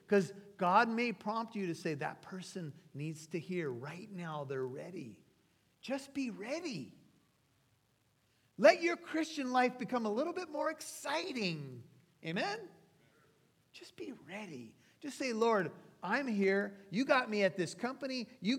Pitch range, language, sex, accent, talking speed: 140-200 Hz, English, male, American, 145 wpm